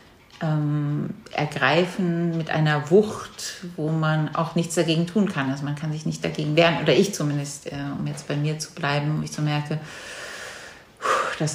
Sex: female